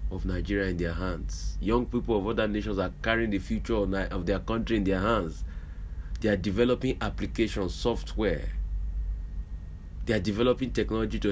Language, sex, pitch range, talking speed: English, male, 80-110 Hz, 165 wpm